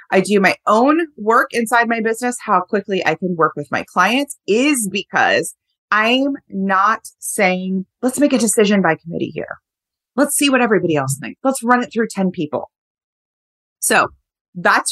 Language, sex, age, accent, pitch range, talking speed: English, female, 30-49, American, 200-255 Hz, 170 wpm